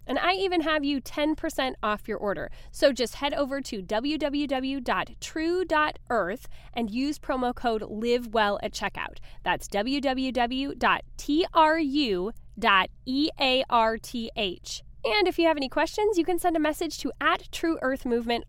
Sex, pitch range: female, 210-300 Hz